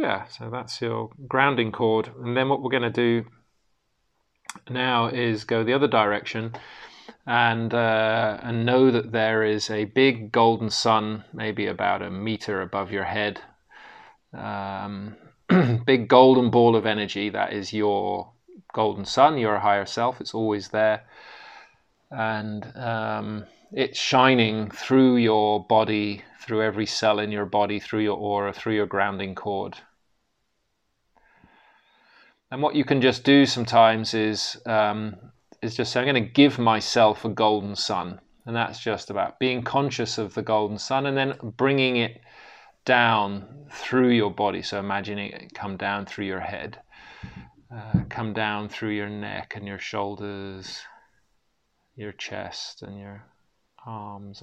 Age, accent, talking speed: 30-49, British, 150 wpm